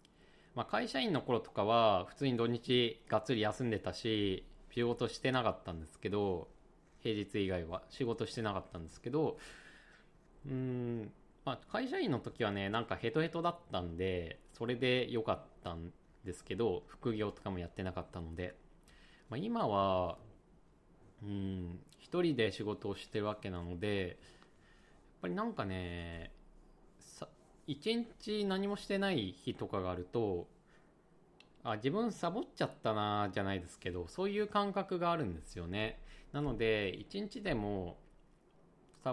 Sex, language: male, Japanese